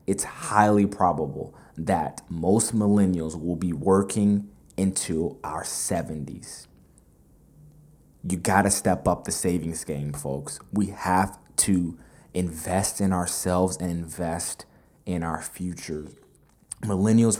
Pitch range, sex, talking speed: 85-100 Hz, male, 115 wpm